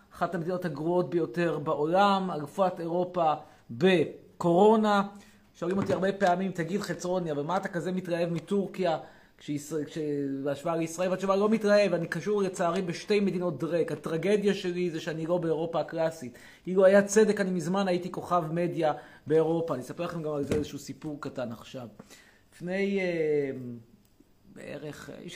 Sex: male